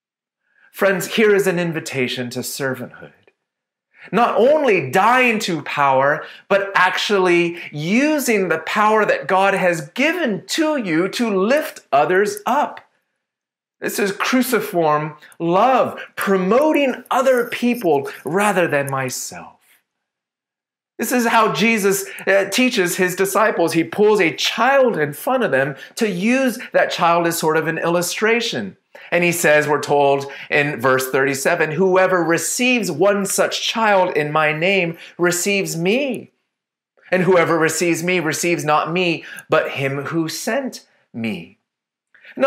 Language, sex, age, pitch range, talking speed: English, male, 30-49, 160-225 Hz, 130 wpm